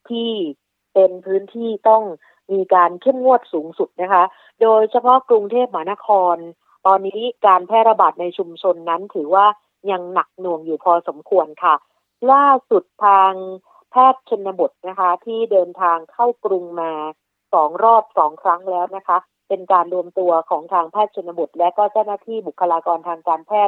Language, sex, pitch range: Thai, female, 175-220 Hz